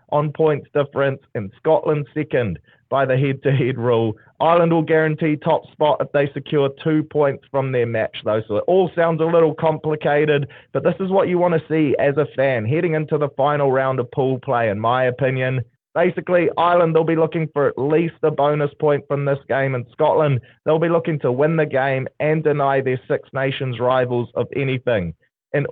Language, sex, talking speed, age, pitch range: English, male, 200 wpm, 20-39, 130-155 Hz